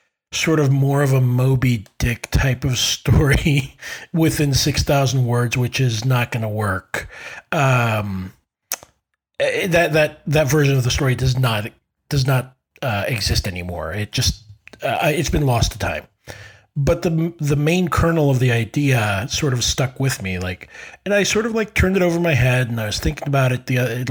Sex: male